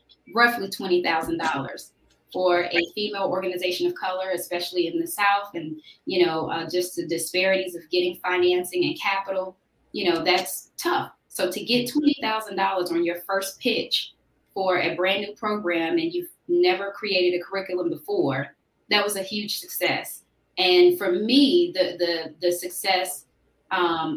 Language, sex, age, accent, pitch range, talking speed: English, female, 20-39, American, 175-205 Hz, 160 wpm